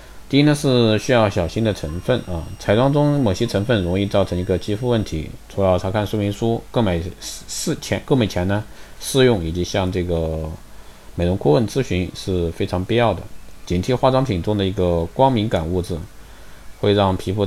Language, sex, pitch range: Chinese, male, 90-120 Hz